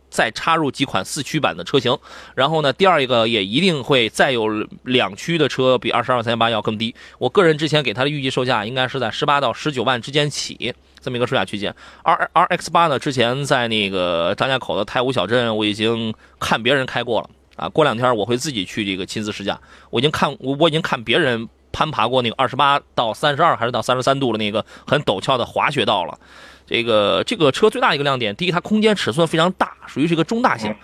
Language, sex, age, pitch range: Chinese, male, 20-39, 120-170 Hz